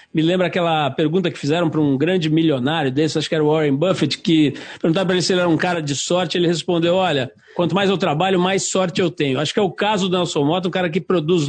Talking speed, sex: 265 wpm, male